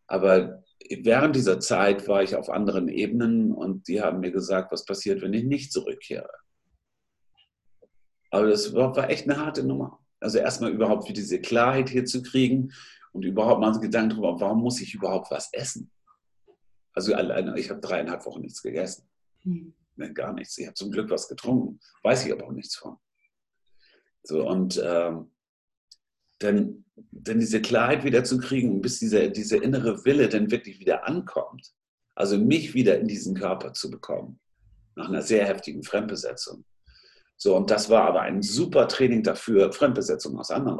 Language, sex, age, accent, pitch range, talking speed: German, male, 50-69, German, 105-165 Hz, 165 wpm